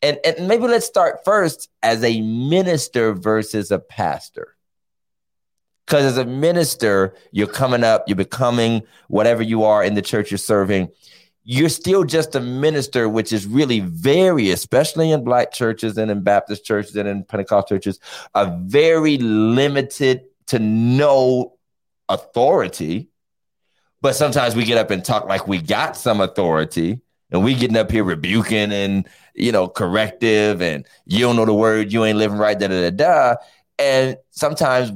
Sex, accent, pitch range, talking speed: male, American, 100-130 Hz, 155 wpm